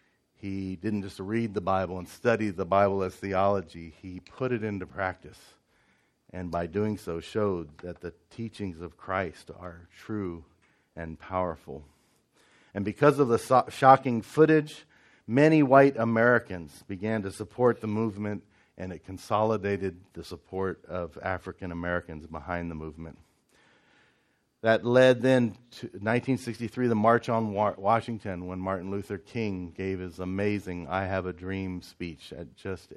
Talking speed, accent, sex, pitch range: 145 wpm, American, male, 90-115 Hz